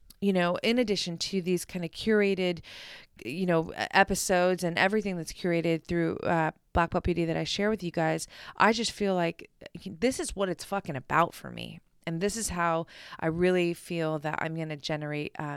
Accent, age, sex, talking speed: American, 20-39, female, 195 wpm